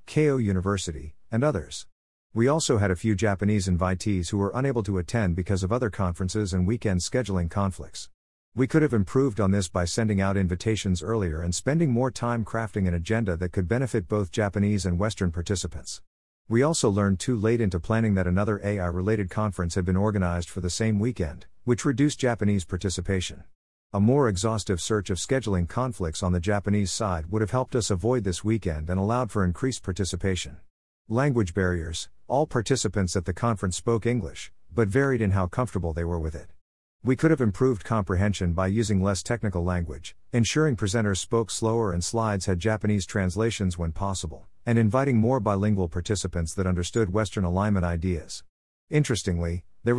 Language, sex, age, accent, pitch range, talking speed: English, male, 50-69, American, 90-115 Hz, 175 wpm